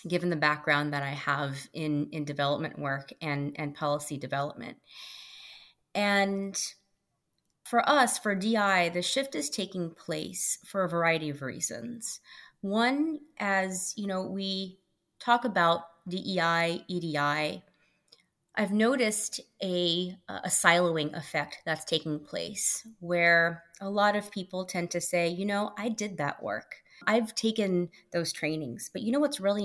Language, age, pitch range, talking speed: English, 30-49, 160-205 Hz, 140 wpm